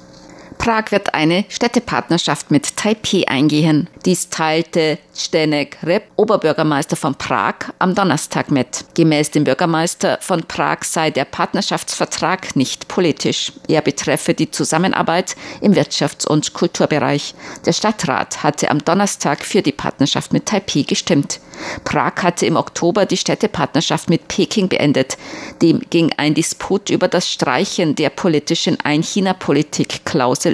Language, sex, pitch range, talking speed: German, female, 150-185 Hz, 130 wpm